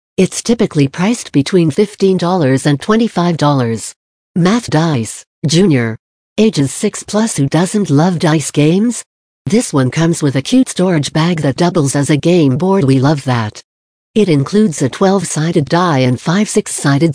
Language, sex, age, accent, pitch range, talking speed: English, female, 60-79, American, 140-190 Hz, 150 wpm